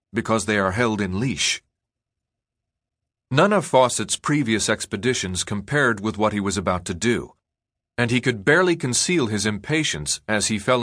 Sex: male